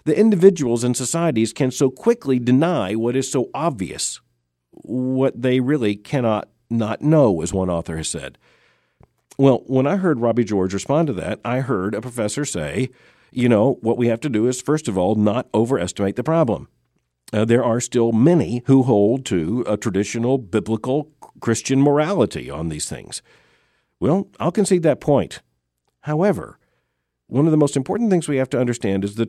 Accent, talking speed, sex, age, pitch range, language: American, 175 wpm, male, 50-69, 105-140 Hz, English